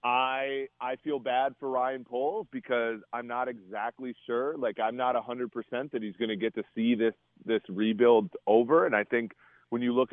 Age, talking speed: 30-49, 195 wpm